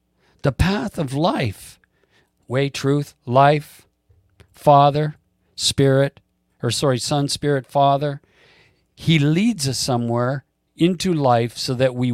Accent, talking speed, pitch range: American, 115 wpm, 105-155 Hz